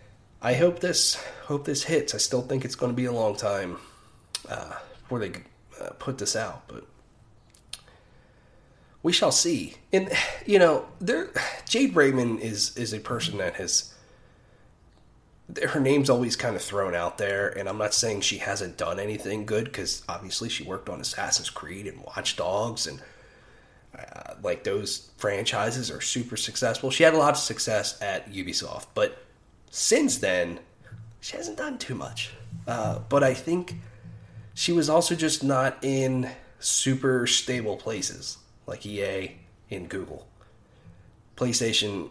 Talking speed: 155 wpm